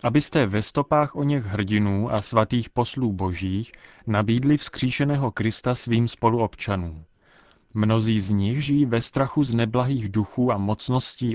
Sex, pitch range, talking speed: male, 110-135 Hz, 135 wpm